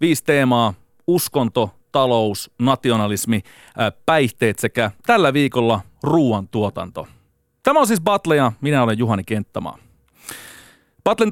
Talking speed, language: 105 wpm, Finnish